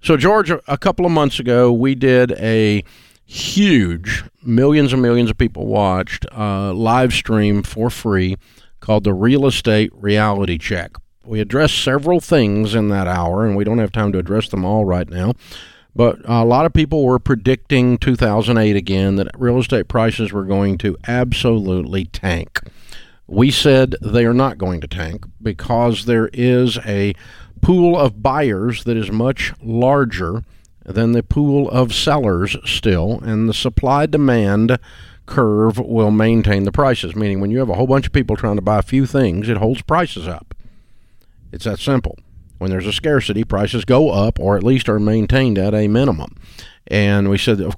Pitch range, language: 100-125 Hz, English